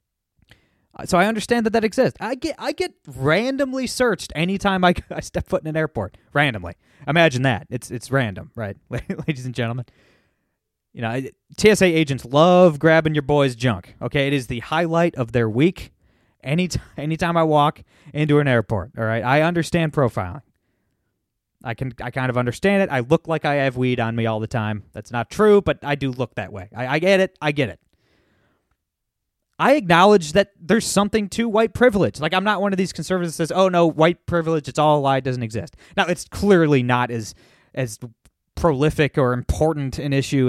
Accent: American